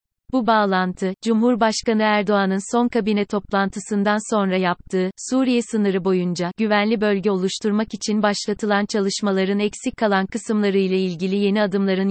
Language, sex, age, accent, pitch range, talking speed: Turkish, female, 30-49, native, 190-220 Hz, 120 wpm